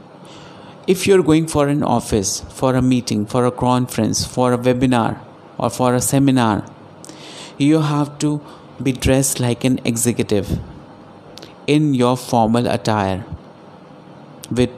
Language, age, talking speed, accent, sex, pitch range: Hindi, 50-69, 135 wpm, native, male, 120-150 Hz